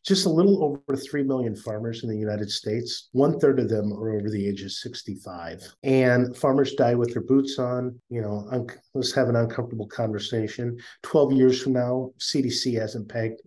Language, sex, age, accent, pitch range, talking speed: English, male, 50-69, American, 105-135 Hz, 185 wpm